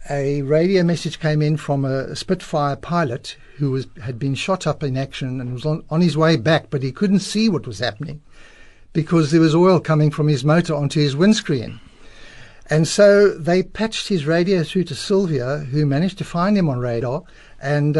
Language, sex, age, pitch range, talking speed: English, male, 60-79, 135-165 Hz, 195 wpm